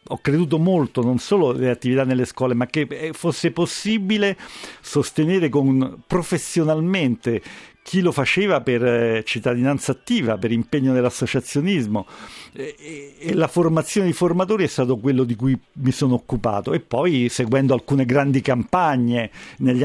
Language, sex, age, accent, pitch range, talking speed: Italian, male, 50-69, native, 125-165 Hz, 140 wpm